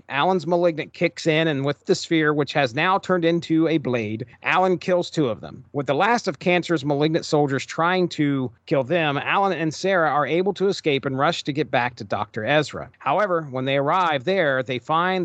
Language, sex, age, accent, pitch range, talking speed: English, male, 40-59, American, 135-170 Hz, 210 wpm